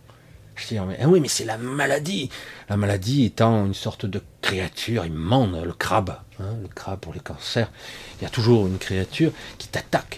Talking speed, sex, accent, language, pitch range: 195 wpm, male, French, French, 95-125 Hz